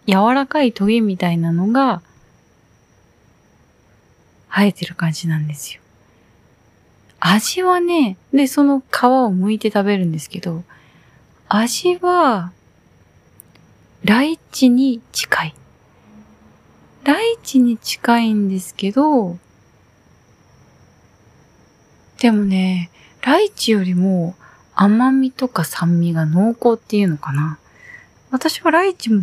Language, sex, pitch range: Japanese, female, 160-230 Hz